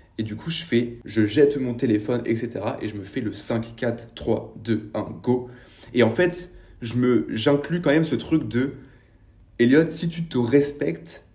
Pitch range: 110-145 Hz